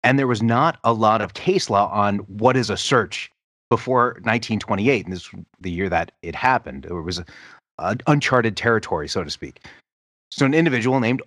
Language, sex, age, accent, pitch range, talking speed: English, male, 30-49, American, 110-145 Hz, 195 wpm